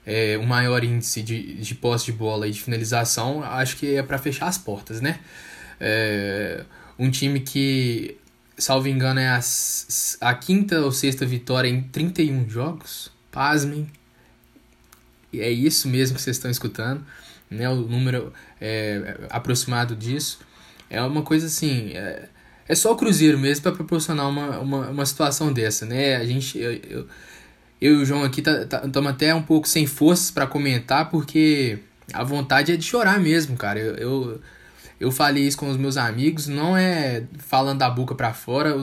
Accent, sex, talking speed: Brazilian, male, 160 wpm